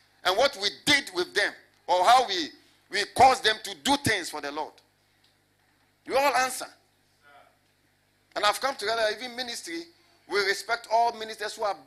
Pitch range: 175-230 Hz